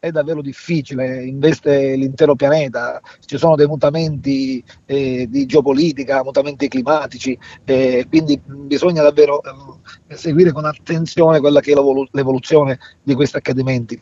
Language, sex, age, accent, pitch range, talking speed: Italian, male, 40-59, native, 135-155 Hz, 135 wpm